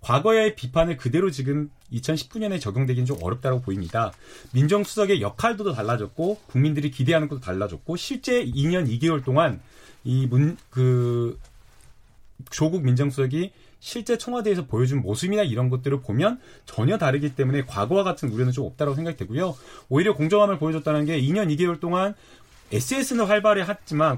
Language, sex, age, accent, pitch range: Korean, male, 30-49, native, 130-190 Hz